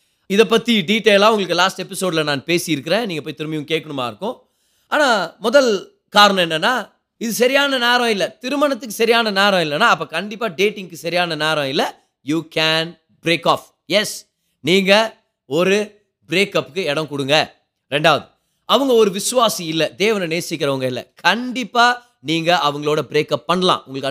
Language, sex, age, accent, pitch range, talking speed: Tamil, male, 30-49, native, 155-220 Hz, 135 wpm